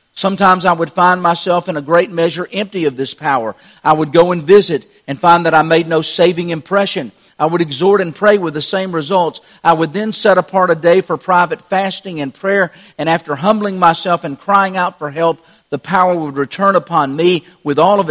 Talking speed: 215 wpm